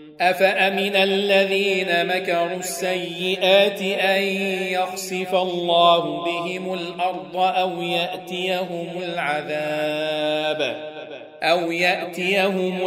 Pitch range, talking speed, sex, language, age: 170-185 Hz, 65 wpm, male, Arabic, 40-59